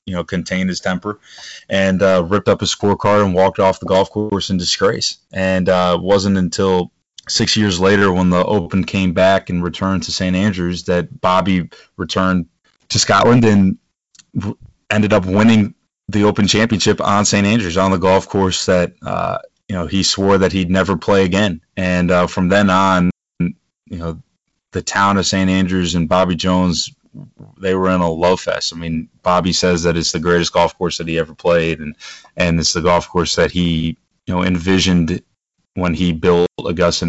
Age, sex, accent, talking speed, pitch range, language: 20-39, male, American, 190 wpm, 85-95 Hz, English